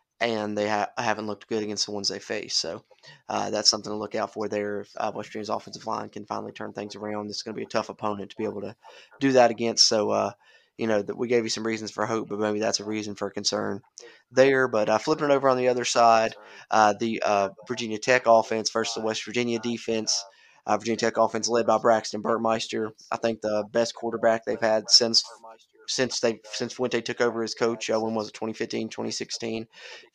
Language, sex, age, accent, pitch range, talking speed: English, male, 20-39, American, 105-115 Hz, 225 wpm